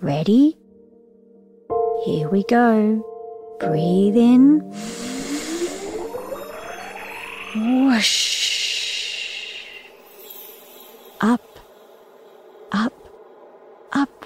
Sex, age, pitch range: female, 40-59, 205-260 Hz